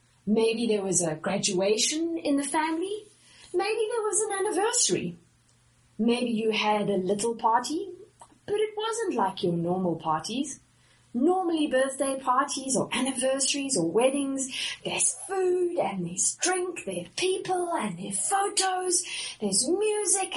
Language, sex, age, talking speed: English, female, 30-49, 135 wpm